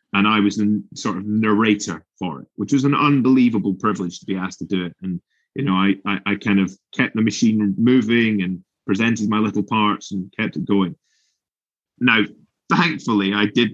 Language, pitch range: English, 95-110 Hz